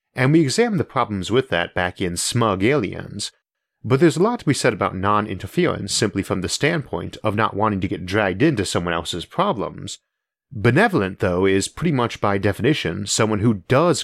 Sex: male